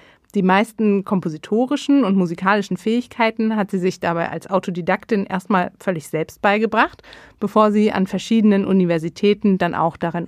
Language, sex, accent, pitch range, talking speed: German, female, German, 185-235 Hz, 140 wpm